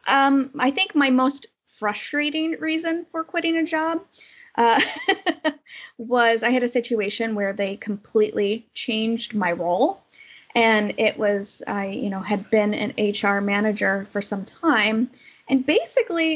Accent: American